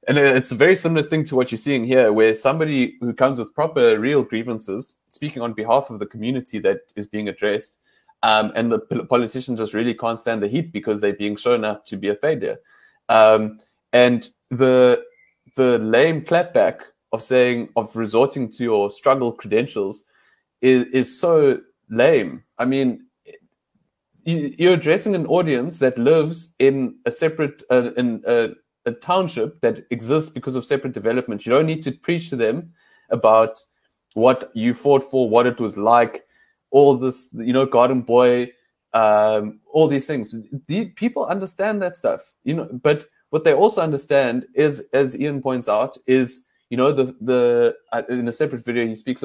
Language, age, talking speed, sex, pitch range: English, 20-39, 175 wpm, male, 115-155 Hz